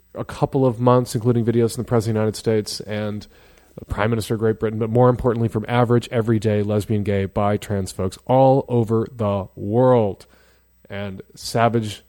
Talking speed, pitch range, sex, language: 185 wpm, 110-145 Hz, male, English